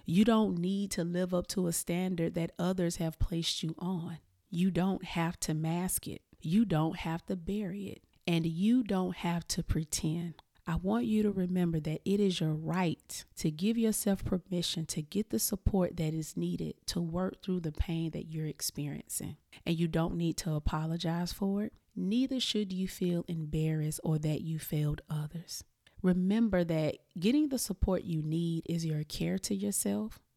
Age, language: 30-49, English